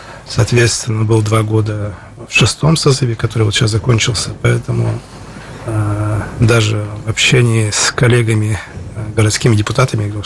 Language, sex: Russian, male